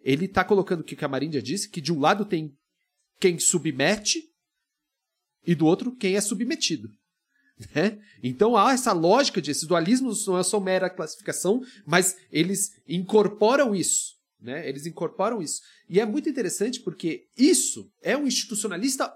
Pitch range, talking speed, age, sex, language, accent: 145-245 Hz, 160 wpm, 40-59, male, Portuguese, Brazilian